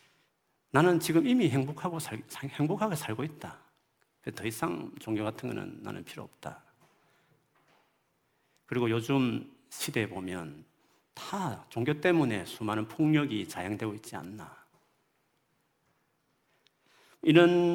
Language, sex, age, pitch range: Korean, male, 40-59, 105-140 Hz